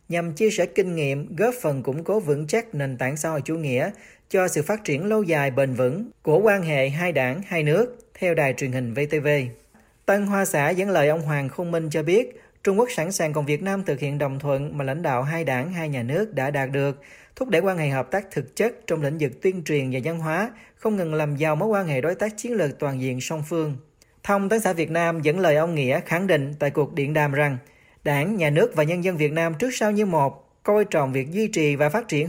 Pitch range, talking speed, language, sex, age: 145-190 Hz, 255 wpm, Vietnamese, male, 40-59